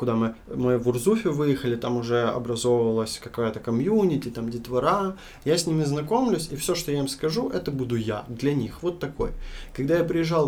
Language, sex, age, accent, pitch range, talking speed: Ukrainian, male, 20-39, native, 120-140 Hz, 190 wpm